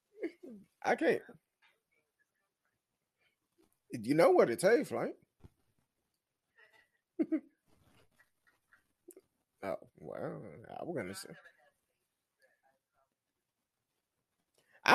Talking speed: 60 wpm